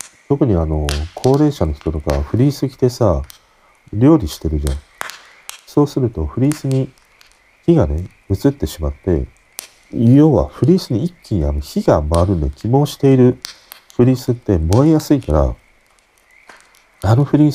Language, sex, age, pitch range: Japanese, male, 40-59, 75-130 Hz